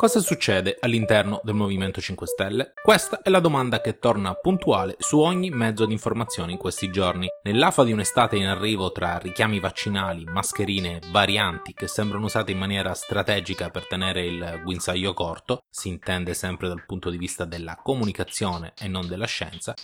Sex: male